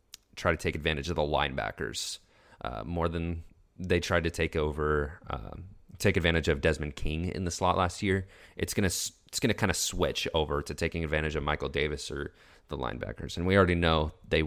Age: 30-49